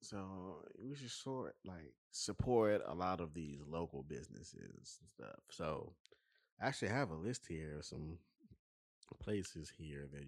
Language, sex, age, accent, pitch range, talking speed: English, male, 20-39, American, 75-105 Hz, 150 wpm